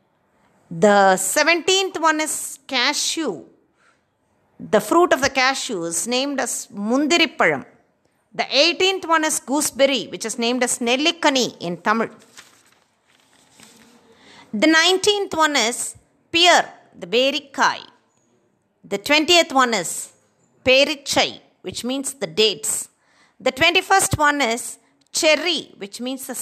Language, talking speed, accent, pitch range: Tamil, 115 wpm, native, 235-310 Hz